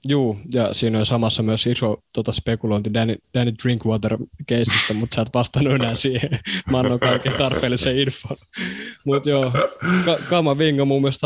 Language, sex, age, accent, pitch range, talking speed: Finnish, male, 20-39, native, 110-130 Hz, 160 wpm